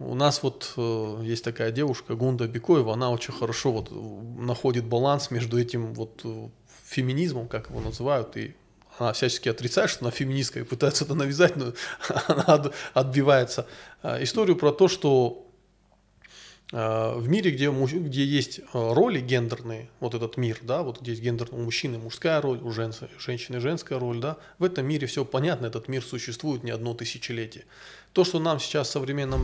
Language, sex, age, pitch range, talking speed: Russian, male, 20-39, 115-140 Hz, 160 wpm